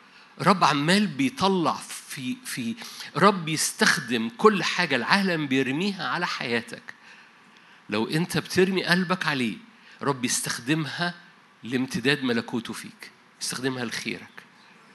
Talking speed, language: 100 wpm, Arabic